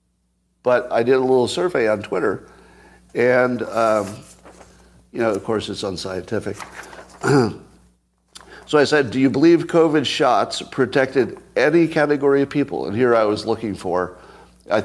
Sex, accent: male, American